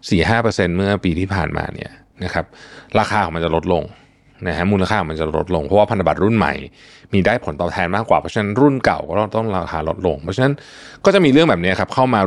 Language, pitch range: Thai, 95-125 Hz